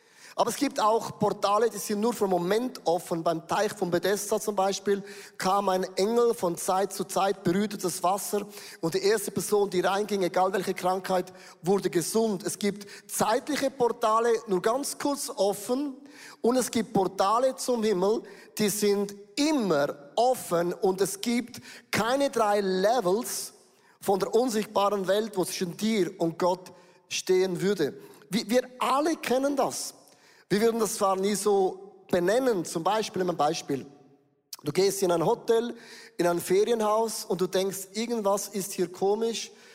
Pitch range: 185-225 Hz